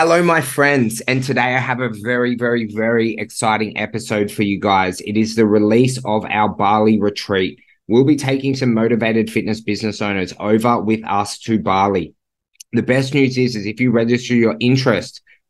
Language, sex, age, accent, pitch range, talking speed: English, male, 20-39, Australian, 100-120 Hz, 180 wpm